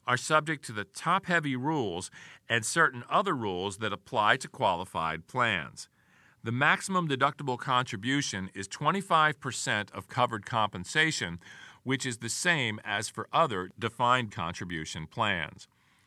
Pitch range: 110-155 Hz